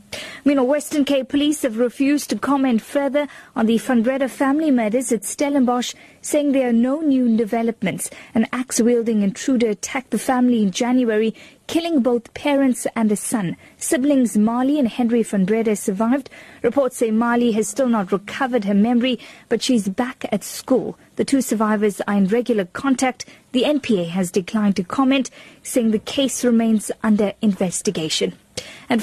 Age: 30-49